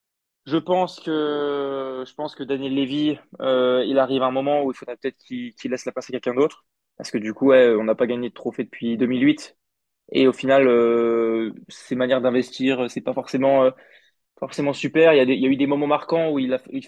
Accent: French